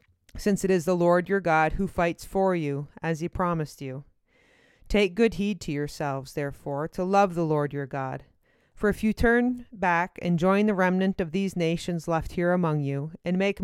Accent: American